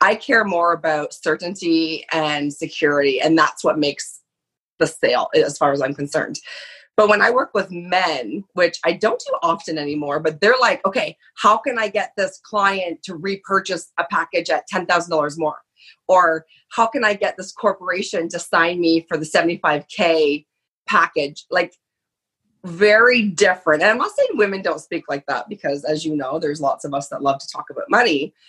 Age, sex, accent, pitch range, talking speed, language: 30-49, female, American, 155-200 Hz, 185 wpm, English